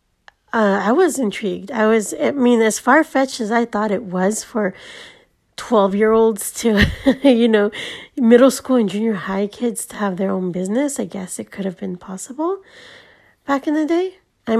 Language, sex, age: English, female, 30-49